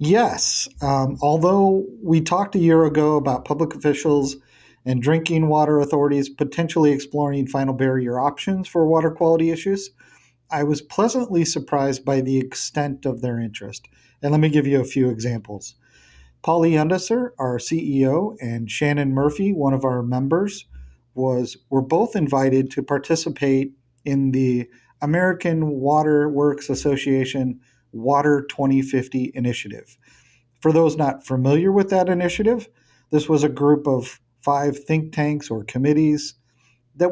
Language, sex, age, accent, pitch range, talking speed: English, male, 40-59, American, 130-155 Hz, 140 wpm